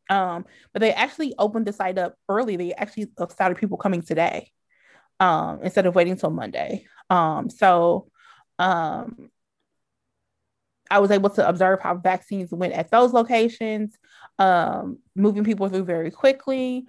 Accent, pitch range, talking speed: American, 185-235 Hz, 145 wpm